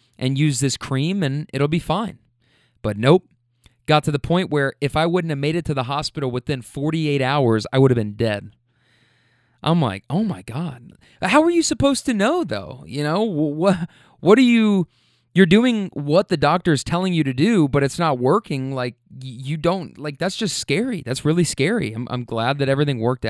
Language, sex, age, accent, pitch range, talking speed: English, male, 20-39, American, 125-165 Hz, 205 wpm